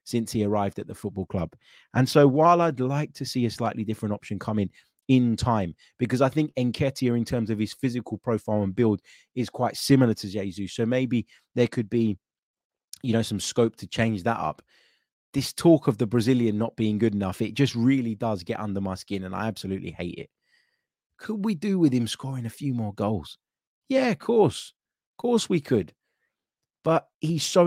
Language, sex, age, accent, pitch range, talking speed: English, male, 20-39, British, 105-140 Hz, 205 wpm